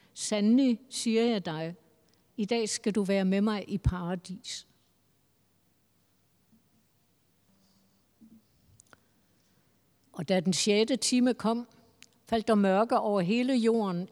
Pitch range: 180-230 Hz